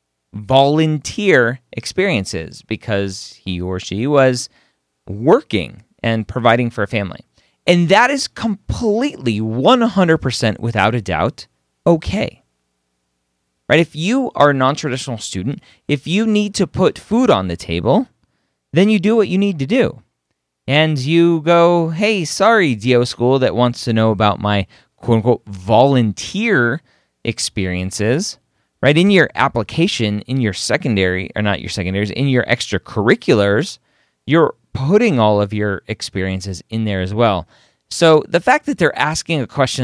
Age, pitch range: 30-49, 100-155 Hz